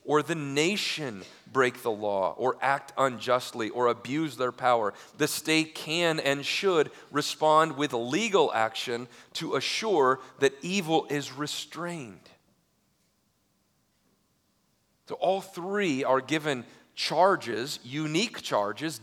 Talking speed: 115 wpm